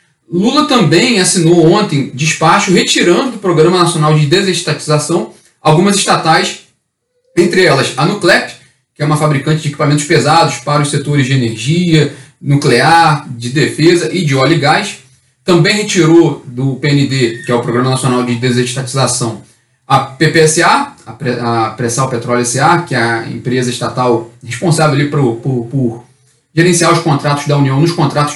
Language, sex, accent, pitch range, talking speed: Portuguese, male, Brazilian, 130-165 Hz, 150 wpm